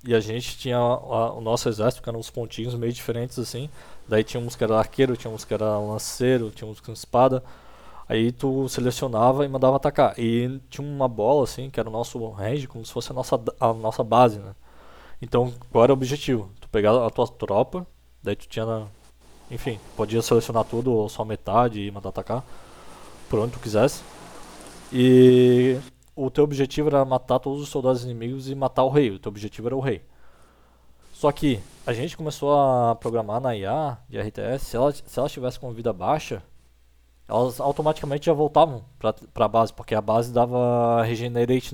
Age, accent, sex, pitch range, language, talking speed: 20-39, Brazilian, male, 110-130 Hz, Portuguese, 185 wpm